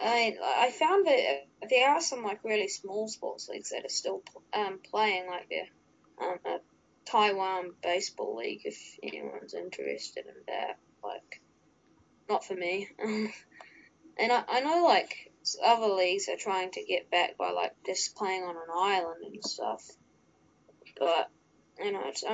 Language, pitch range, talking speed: English, 190-245 Hz, 155 wpm